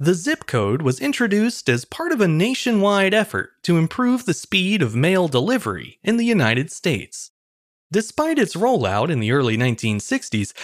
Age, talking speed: 30-49, 165 wpm